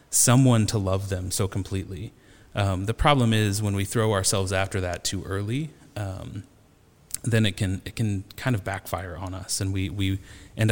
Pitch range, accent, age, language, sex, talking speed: 95-110 Hz, American, 30-49, English, male, 185 wpm